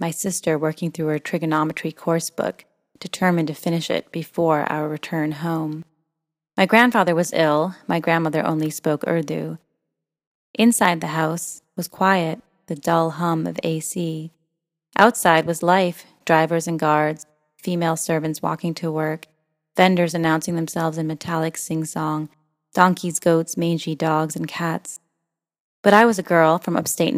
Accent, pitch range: American, 160-175 Hz